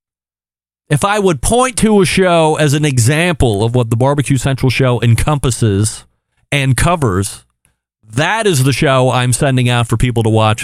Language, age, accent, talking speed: English, 40-59, American, 170 wpm